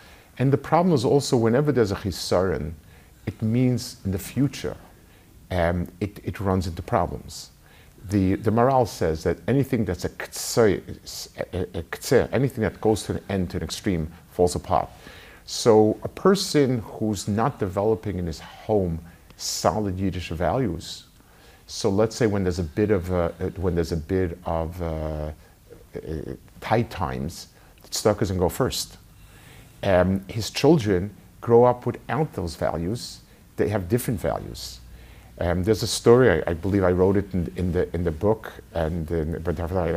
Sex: male